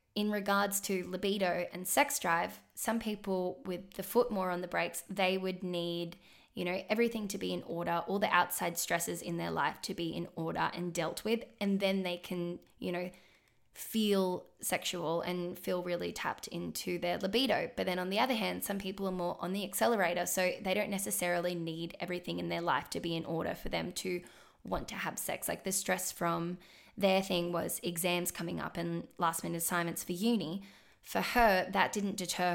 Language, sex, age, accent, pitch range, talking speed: English, female, 10-29, Australian, 170-195 Hz, 200 wpm